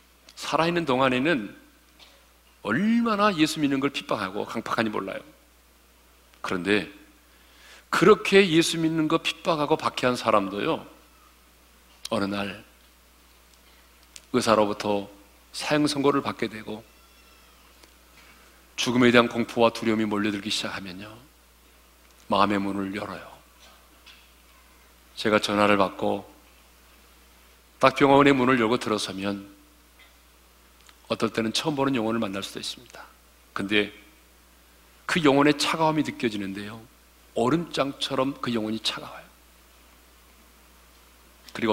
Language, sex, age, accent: Korean, male, 40-59, native